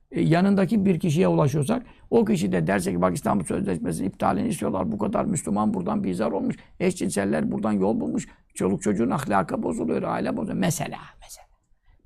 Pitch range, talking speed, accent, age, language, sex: 155-205 Hz, 160 wpm, native, 60-79, Turkish, male